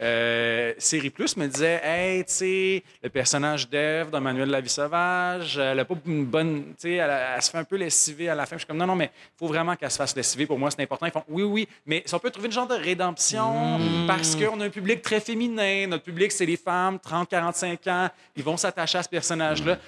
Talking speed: 260 wpm